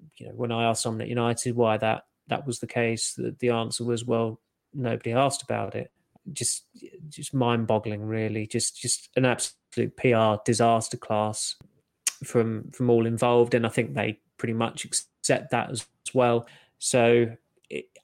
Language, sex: English, male